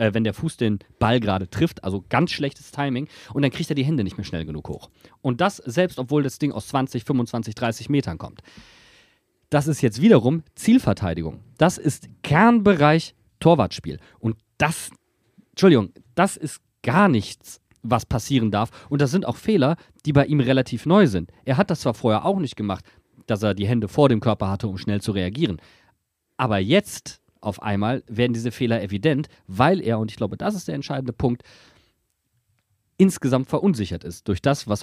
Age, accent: 40-59, German